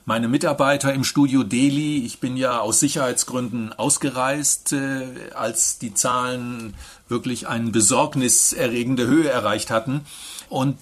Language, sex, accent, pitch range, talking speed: German, male, German, 120-145 Hz, 115 wpm